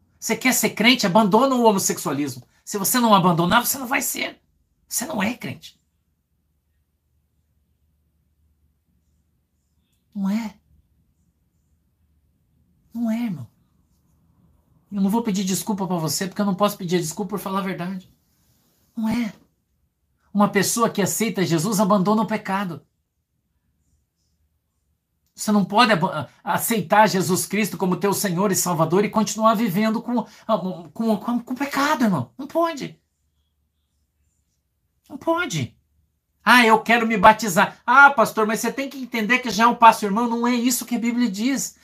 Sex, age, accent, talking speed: male, 50-69, Brazilian, 145 wpm